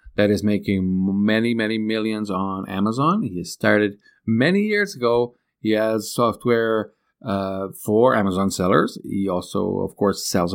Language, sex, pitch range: English, male, 95-120 Hz